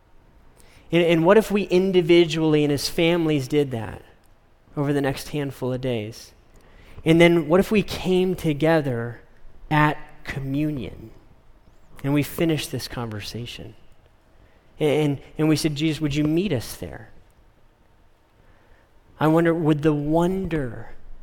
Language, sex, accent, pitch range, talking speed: English, male, American, 115-155 Hz, 125 wpm